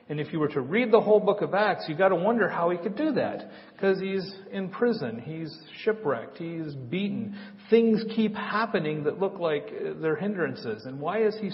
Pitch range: 150-215 Hz